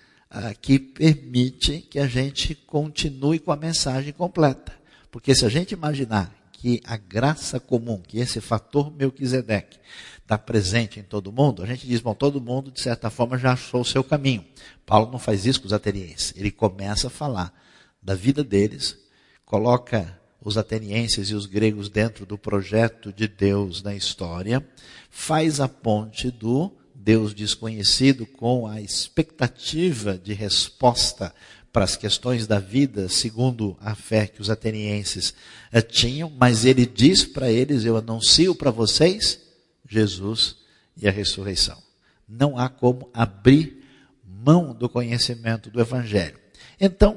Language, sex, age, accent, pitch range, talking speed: Portuguese, male, 50-69, Brazilian, 105-135 Hz, 150 wpm